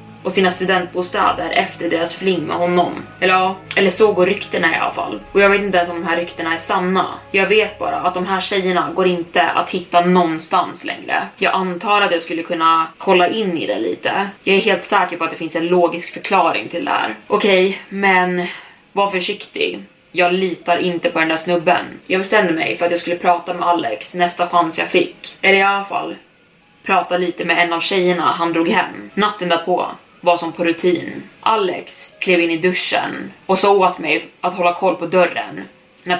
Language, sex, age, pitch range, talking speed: Swedish, female, 20-39, 170-190 Hz, 210 wpm